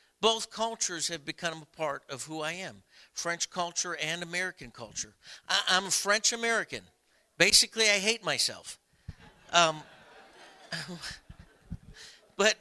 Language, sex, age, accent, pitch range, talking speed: English, male, 50-69, American, 145-185 Hz, 120 wpm